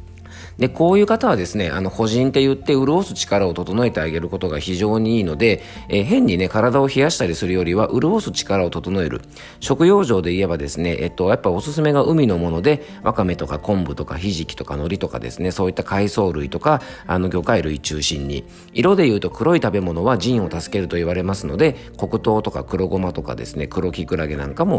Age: 40-59